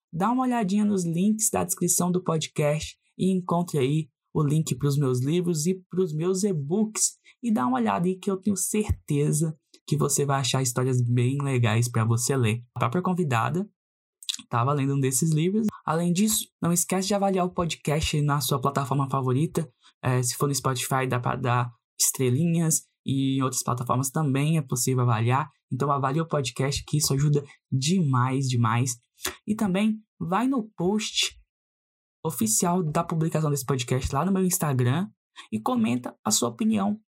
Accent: Brazilian